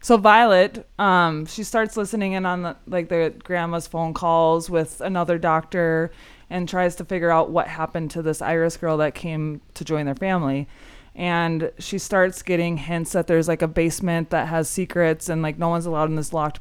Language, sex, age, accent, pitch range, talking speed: English, female, 20-39, American, 160-180 Hz, 200 wpm